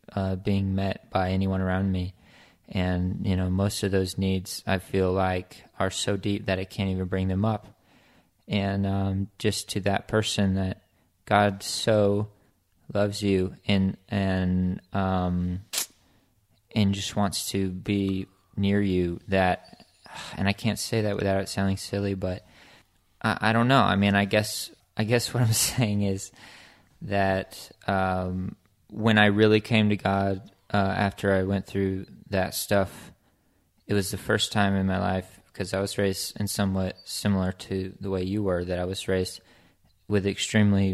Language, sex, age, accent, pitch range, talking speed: English, male, 20-39, American, 95-100 Hz, 165 wpm